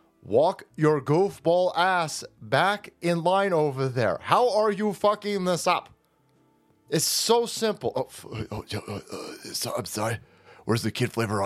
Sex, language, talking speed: male, English, 145 wpm